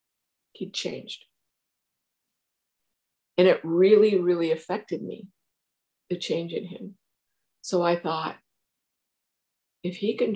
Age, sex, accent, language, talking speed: 50-69, female, American, English, 100 wpm